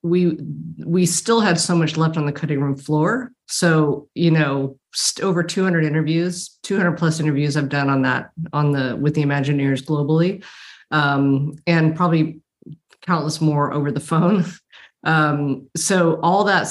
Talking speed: 160 wpm